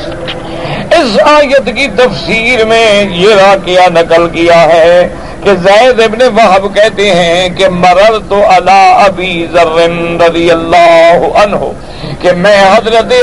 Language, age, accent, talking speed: English, 60-79, Indian, 125 wpm